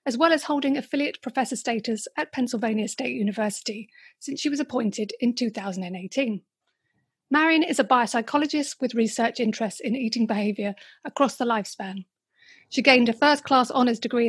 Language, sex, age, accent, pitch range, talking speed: English, female, 40-59, British, 220-275 Hz, 150 wpm